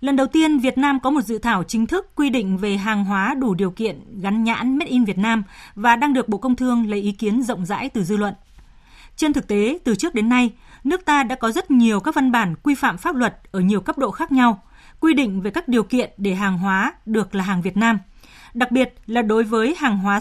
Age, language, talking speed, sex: 20-39, Vietnamese, 255 wpm, female